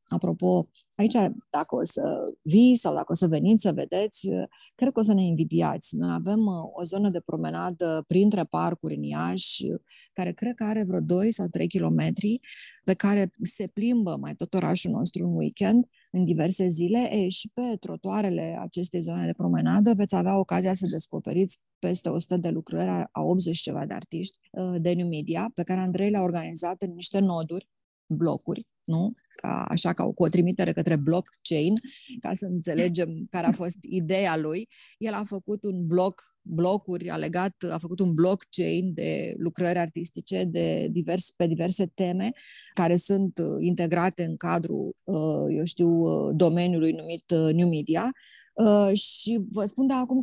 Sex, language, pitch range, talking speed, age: female, Romanian, 170-205 Hz, 165 wpm, 20-39